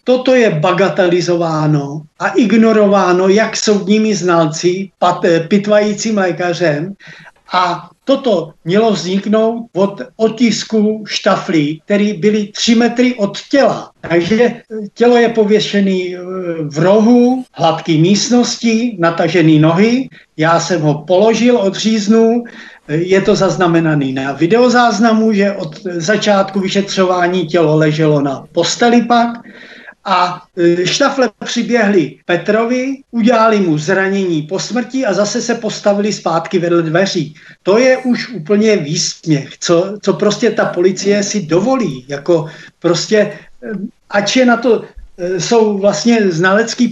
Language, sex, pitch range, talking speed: Czech, male, 175-225 Hz, 115 wpm